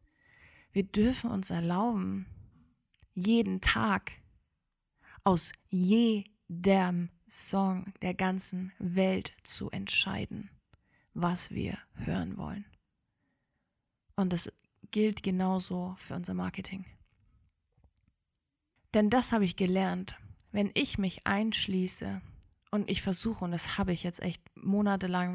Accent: German